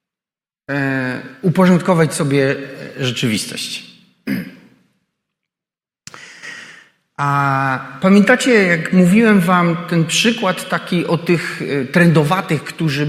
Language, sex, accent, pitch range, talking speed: Polish, male, native, 150-190 Hz, 70 wpm